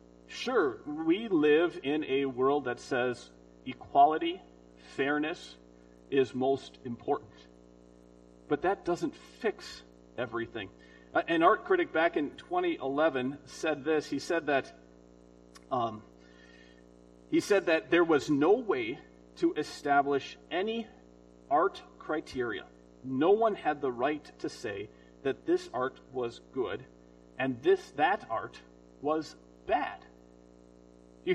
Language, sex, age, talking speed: English, male, 40-59, 115 wpm